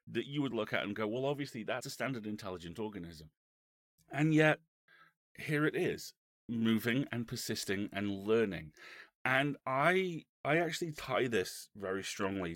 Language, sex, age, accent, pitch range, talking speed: English, male, 30-49, British, 90-120 Hz, 155 wpm